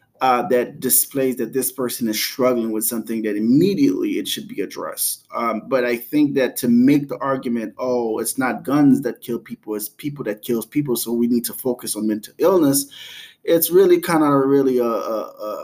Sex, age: male, 20-39